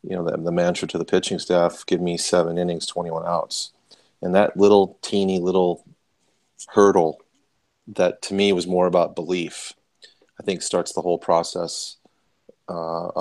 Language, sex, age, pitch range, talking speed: English, male, 30-49, 85-90 Hz, 160 wpm